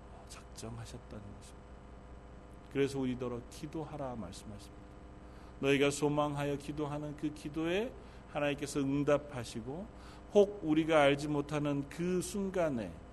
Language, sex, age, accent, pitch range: Korean, male, 40-59, native, 120-165 Hz